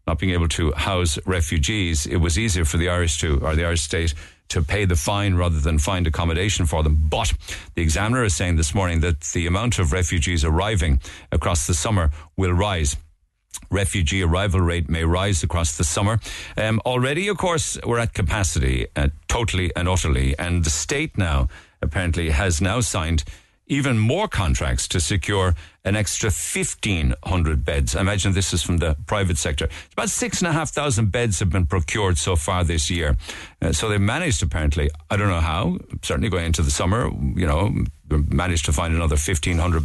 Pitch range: 80-100 Hz